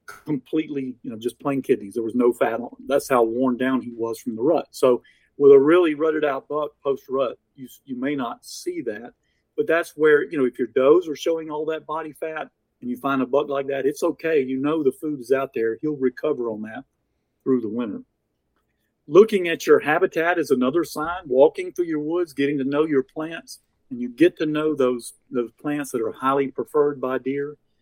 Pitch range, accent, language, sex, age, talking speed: 130-160 Hz, American, English, male, 50-69, 220 wpm